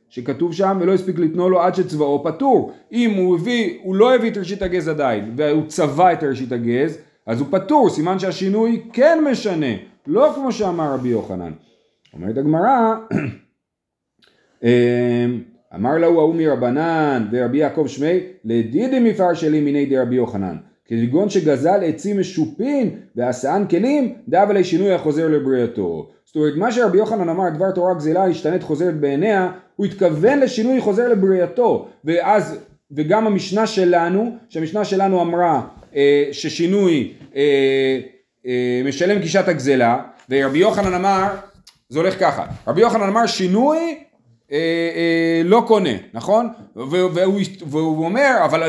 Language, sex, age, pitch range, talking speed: Hebrew, male, 30-49, 155-220 Hz, 140 wpm